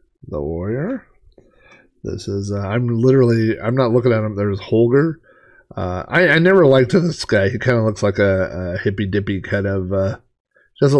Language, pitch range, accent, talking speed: English, 100-125 Hz, American, 180 wpm